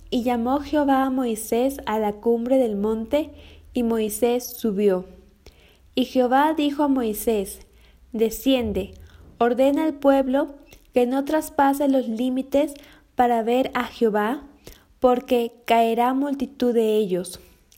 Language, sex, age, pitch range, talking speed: Spanish, female, 20-39, 230-280 Hz, 120 wpm